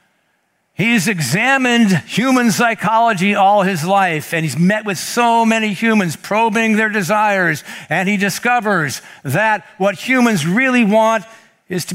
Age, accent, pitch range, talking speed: 60-79, American, 165-215 Hz, 135 wpm